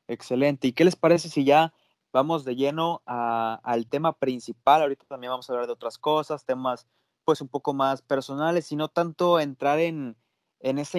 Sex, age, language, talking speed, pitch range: male, 20-39, Spanish, 185 wpm, 125-150 Hz